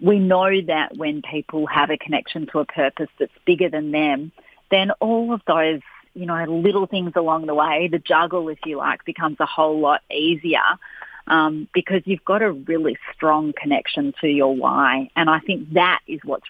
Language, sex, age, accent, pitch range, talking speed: English, female, 30-49, Australian, 155-190 Hz, 195 wpm